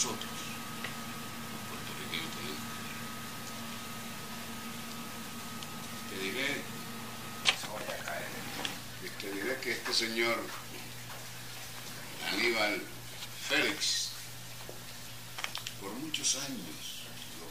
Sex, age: male, 60-79